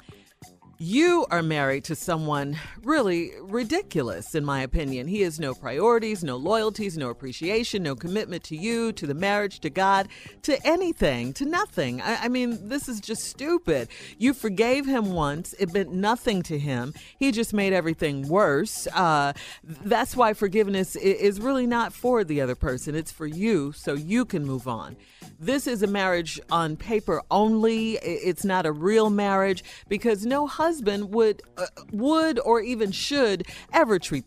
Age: 40-59